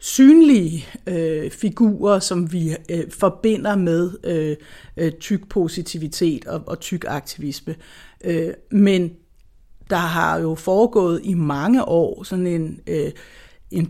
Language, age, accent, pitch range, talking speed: Danish, 60-79, native, 165-205 Hz, 100 wpm